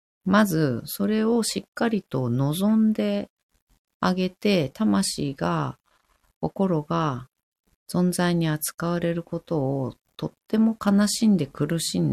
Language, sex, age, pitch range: Japanese, female, 40-59, 135-195 Hz